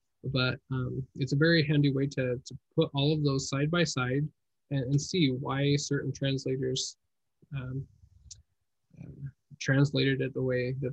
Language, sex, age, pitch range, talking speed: English, male, 20-39, 130-145 Hz, 160 wpm